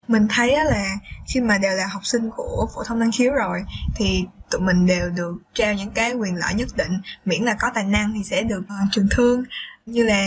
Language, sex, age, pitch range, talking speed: Vietnamese, female, 10-29, 200-240 Hz, 230 wpm